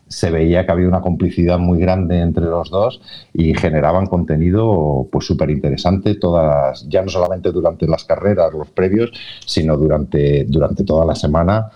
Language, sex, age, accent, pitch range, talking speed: Spanish, male, 50-69, Spanish, 80-95 Hz, 160 wpm